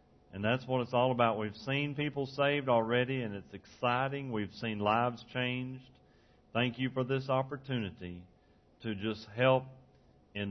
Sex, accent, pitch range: male, American, 105-135 Hz